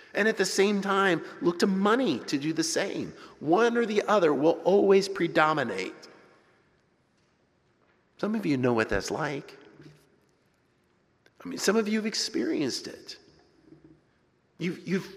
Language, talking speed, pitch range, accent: English, 140 wpm, 160-205 Hz, American